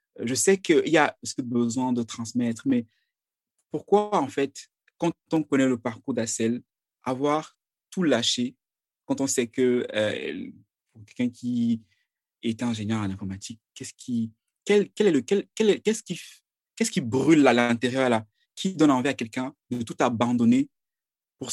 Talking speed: 135 wpm